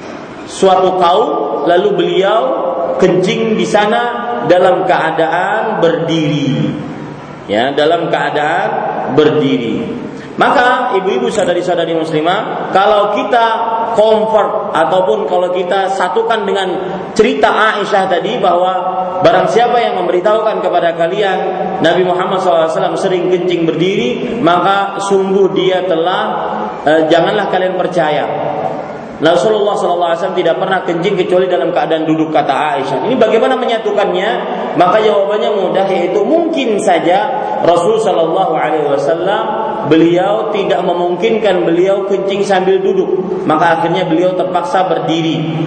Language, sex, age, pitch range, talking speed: Malay, male, 40-59, 175-210 Hz, 115 wpm